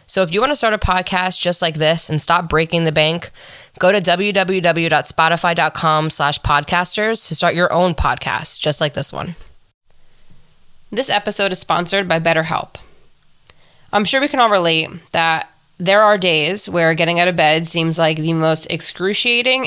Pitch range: 155-180 Hz